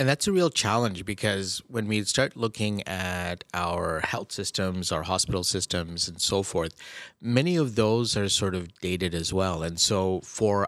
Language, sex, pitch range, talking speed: English, male, 90-115 Hz, 180 wpm